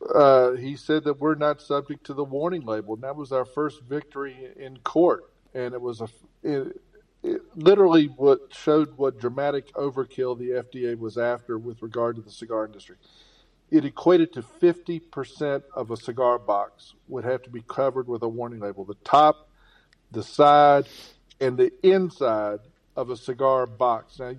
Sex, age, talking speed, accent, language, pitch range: male, 50-69, 165 wpm, American, English, 120-150 Hz